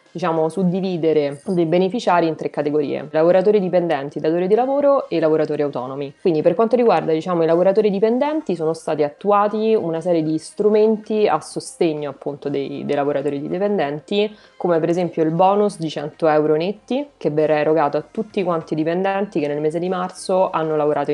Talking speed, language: 175 wpm, Italian